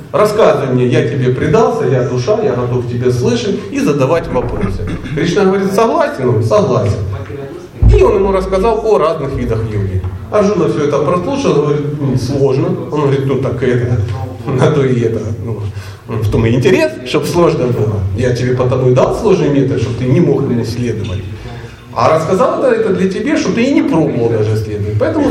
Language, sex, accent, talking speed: Russian, male, native, 185 wpm